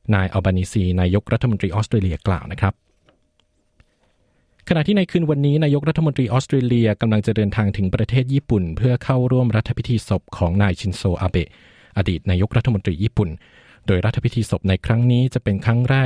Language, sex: Thai, male